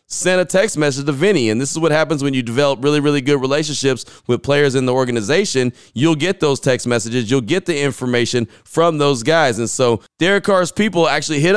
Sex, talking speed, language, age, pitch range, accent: male, 220 wpm, English, 20-39, 130-160 Hz, American